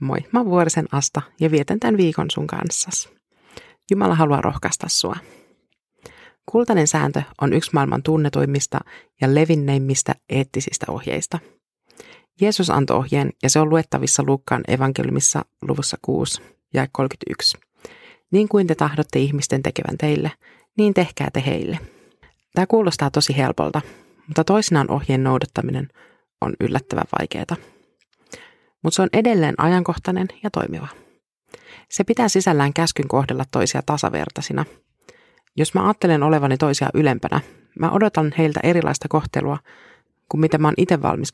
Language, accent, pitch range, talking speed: Finnish, native, 135-180 Hz, 130 wpm